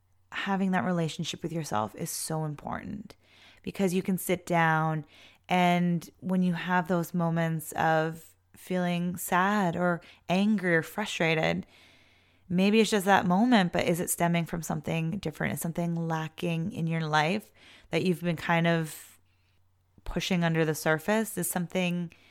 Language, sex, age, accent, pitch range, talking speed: English, female, 20-39, American, 155-180 Hz, 150 wpm